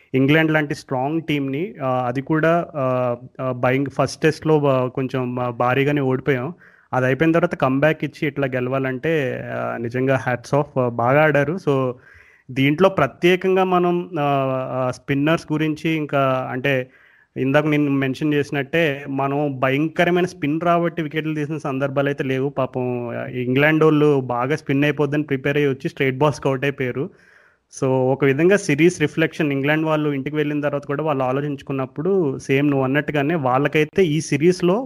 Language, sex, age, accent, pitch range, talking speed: Telugu, male, 30-49, native, 135-155 Hz, 130 wpm